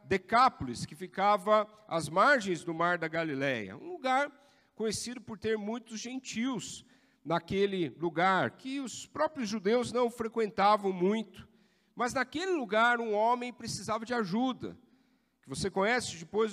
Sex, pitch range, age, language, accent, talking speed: male, 180-245 Hz, 50-69, Portuguese, Brazilian, 135 wpm